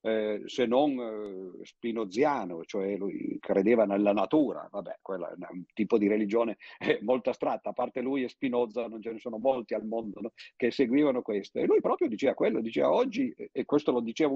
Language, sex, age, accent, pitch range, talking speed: Italian, male, 50-69, native, 115-145 Hz, 190 wpm